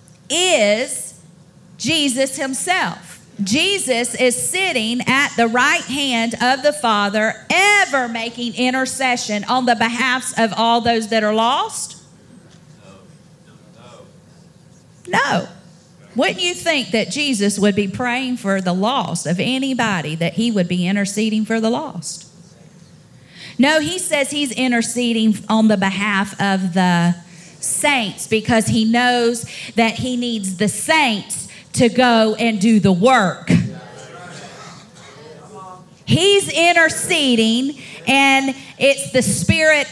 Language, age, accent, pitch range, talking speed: English, 40-59, American, 210-280 Hz, 115 wpm